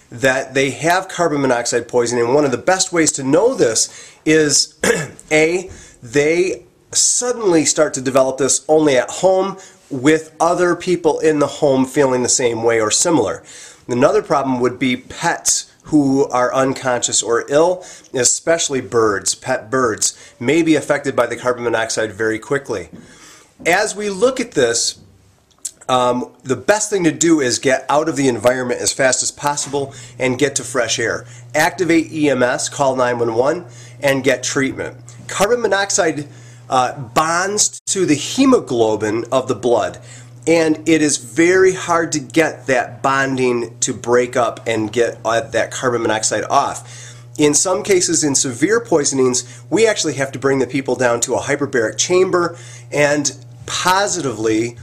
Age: 30-49